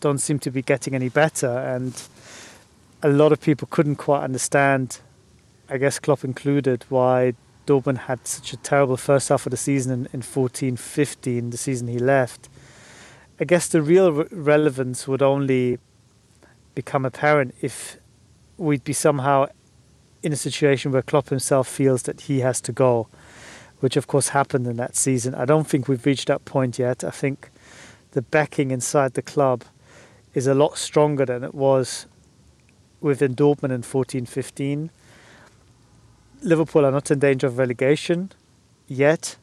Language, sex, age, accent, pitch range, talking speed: English, male, 30-49, British, 125-145 Hz, 155 wpm